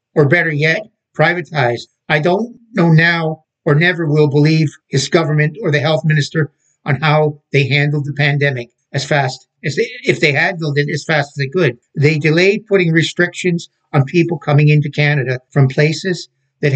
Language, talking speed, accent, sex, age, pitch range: English, 175 wpm, American, male, 60-79, 145-170 Hz